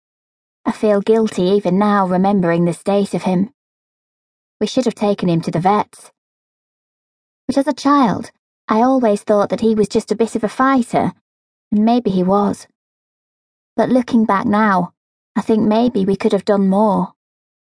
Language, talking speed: English, 170 wpm